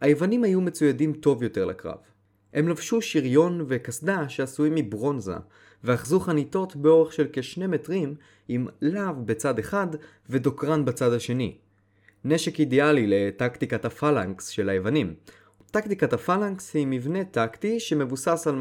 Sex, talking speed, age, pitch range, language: male, 125 wpm, 20-39, 115-160 Hz, Hebrew